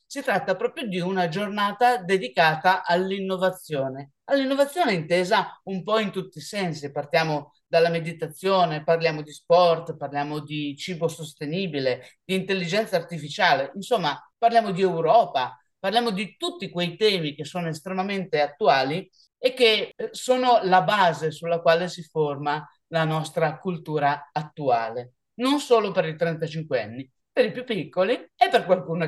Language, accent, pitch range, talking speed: Italian, native, 150-210 Hz, 140 wpm